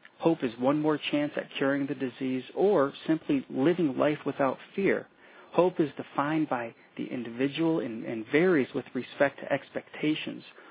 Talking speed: 150 wpm